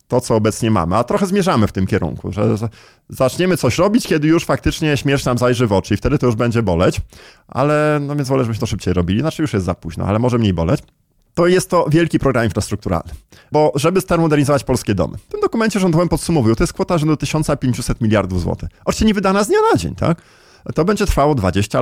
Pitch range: 115-165 Hz